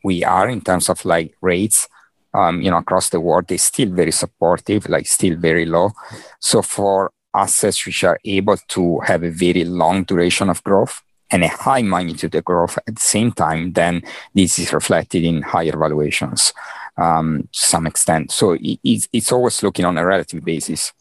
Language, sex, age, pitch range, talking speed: Swedish, male, 50-69, 85-95 Hz, 185 wpm